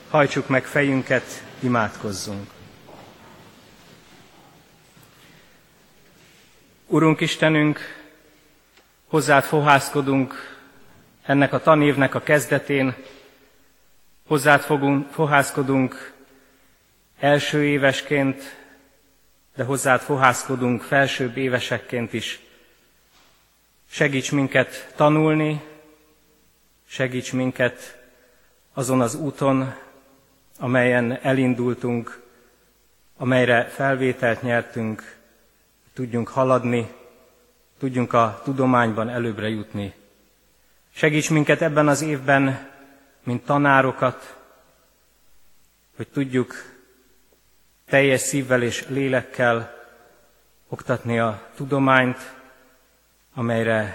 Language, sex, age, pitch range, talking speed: Hungarian, male, 30-49, 120-140 Hz, 70 wpm